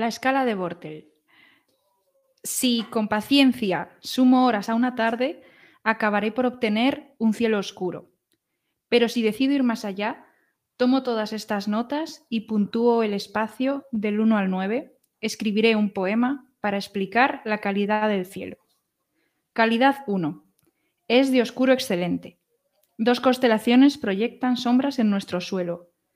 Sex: female